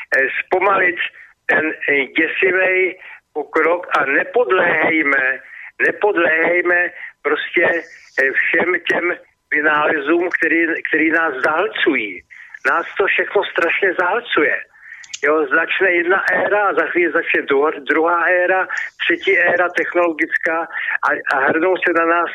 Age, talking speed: 60-79, 100 wpm